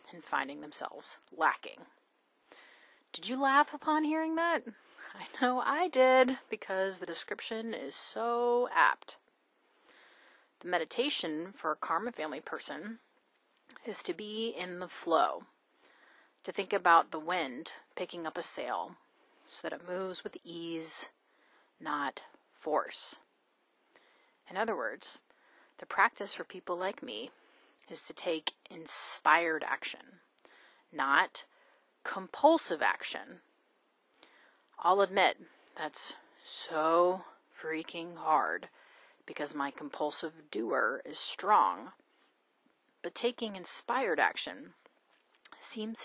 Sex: female